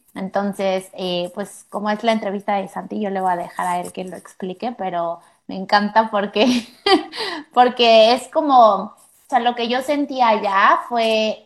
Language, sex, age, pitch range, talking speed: Spanish, female, 20-39, 185-215 Hz, 180 wpm